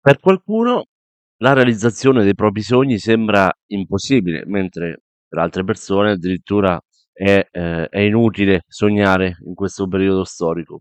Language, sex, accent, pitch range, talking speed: Italian, male, native, 90-110 Hz, 120 wpm